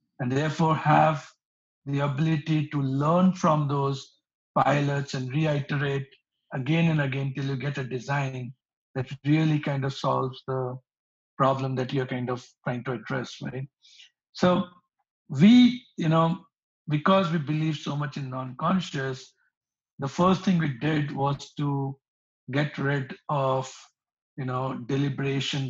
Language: English